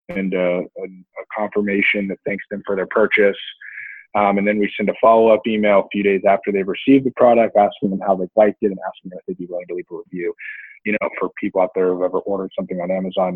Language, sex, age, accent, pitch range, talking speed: English, male, 20-39, American, 90-105 Hz, 245 wpm